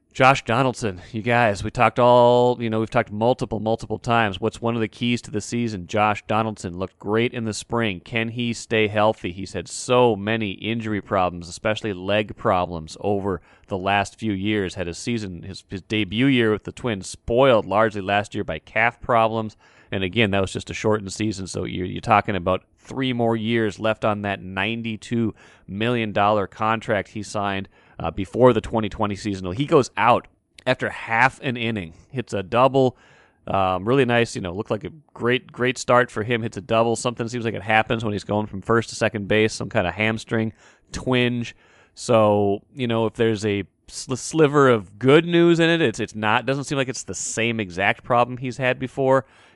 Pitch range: 100-120 Hz